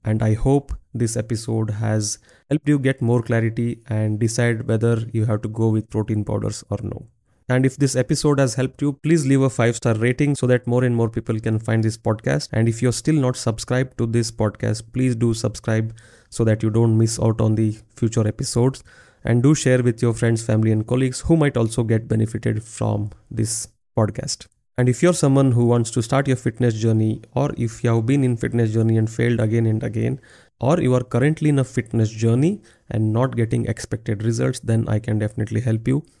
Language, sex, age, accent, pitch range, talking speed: Kannada, male, 30-49, native, 110-125 Hz, 215 wpm